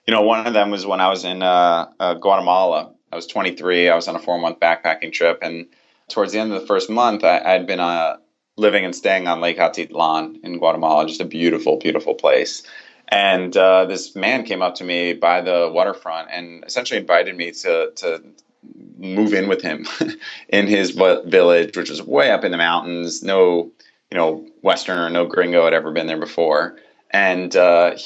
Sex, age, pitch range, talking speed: male, 30-49, 85-115 Hz, 195 wpm